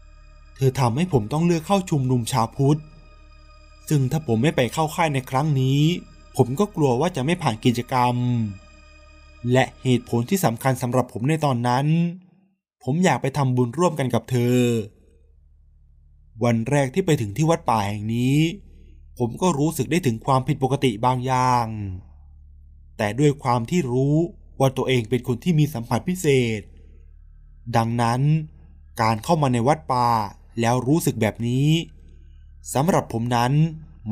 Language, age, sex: Thai, 20-39, male